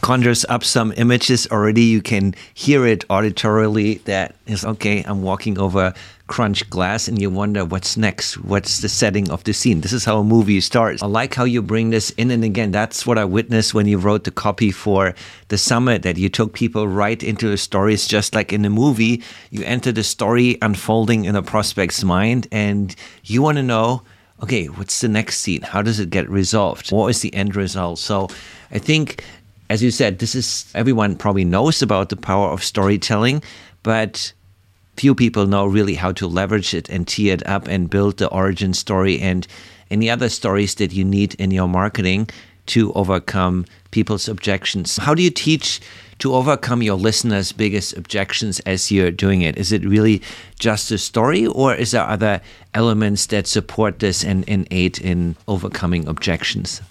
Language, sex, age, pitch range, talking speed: English, male, 50-69, 95-110 Hz, 190 wpm